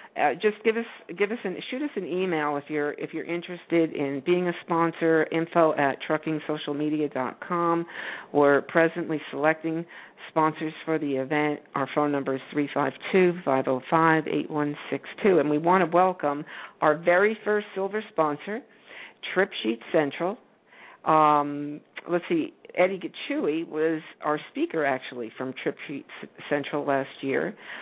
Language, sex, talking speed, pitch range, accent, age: English, female, 155 wpm, 140-170 Hz, American, 50-69